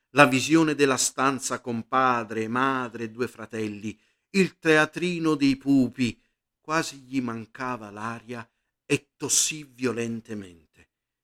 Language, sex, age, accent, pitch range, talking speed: Italian, male, 50-69, native, 125-150 Hz, 110 wpm